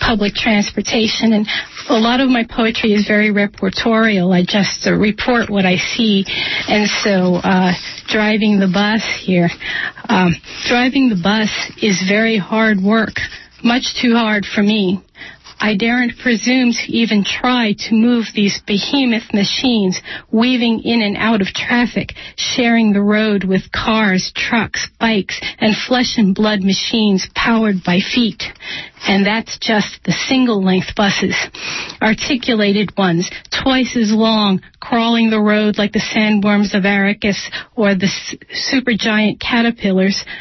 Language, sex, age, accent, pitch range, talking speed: English, female, 40-59, American, 200-230 Hz, 140 wpm